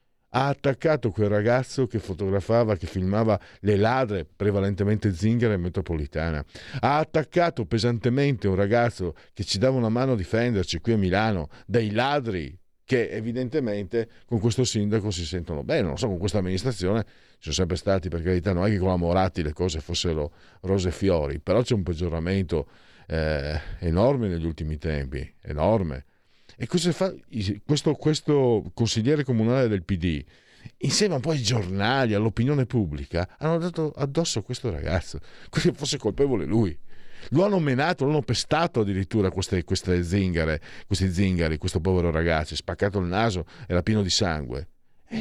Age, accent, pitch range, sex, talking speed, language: 50-69, native, 90-125 Hz, male, 160 wpm, Italian